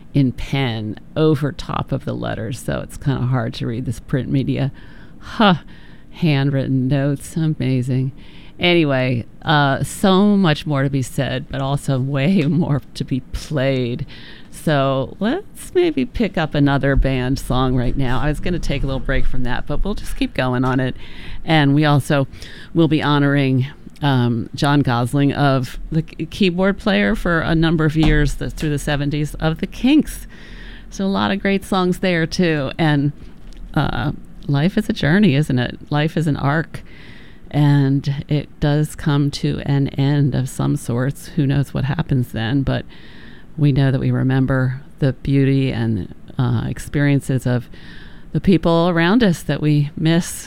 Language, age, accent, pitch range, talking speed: English, 40-59, American, 130-160 Hz, 170 wpm